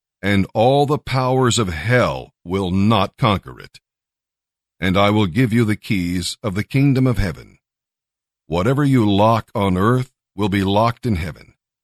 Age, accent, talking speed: 50-69, American, 160 wpm